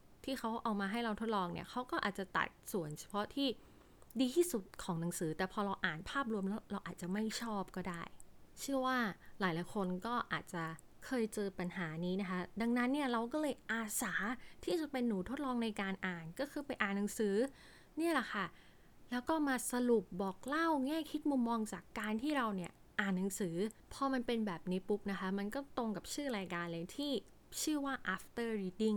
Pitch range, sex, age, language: 190-260 Hz, female, 20-39, Thai